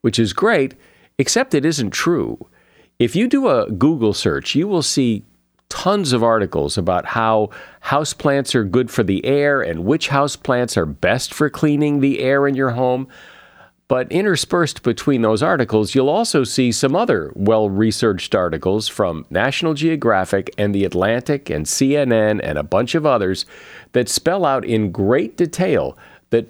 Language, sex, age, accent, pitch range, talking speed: English, male, 50-69, American, 100-135 Hz, 160 wpm